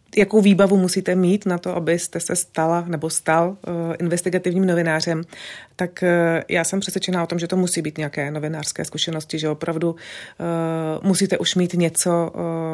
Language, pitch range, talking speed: Czech, 155-180 Hz, 165 wpm